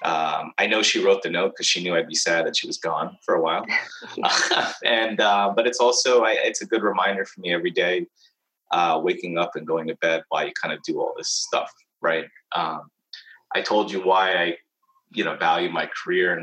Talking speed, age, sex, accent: 225 wpm, 30-49, male, American